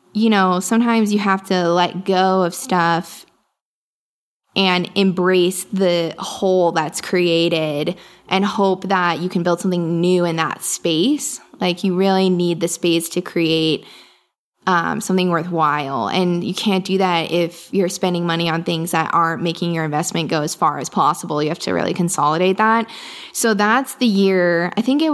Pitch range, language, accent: 170-205 Hz, English, American